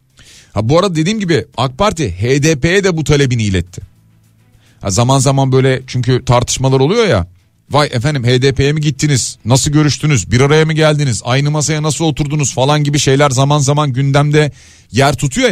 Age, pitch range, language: 40-59, 115-155 Hz, Turkish